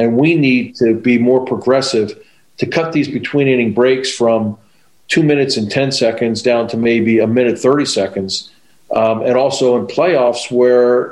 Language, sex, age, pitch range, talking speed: English, male, 40-59, 115-135 Hz, 165 wpm